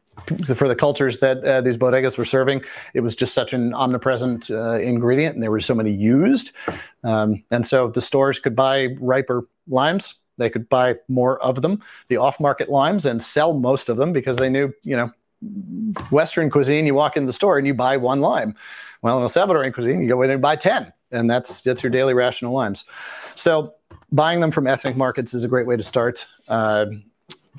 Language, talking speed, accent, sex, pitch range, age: English, 205 wpm, American, male, 120-145 Hz, 30-49